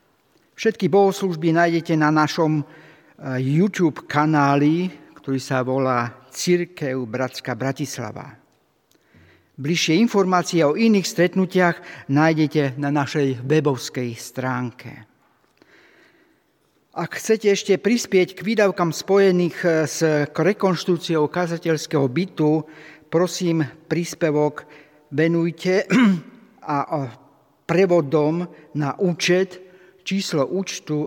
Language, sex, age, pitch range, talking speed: Slovak, male, 50-69, 140-185 Hz, 85 wpm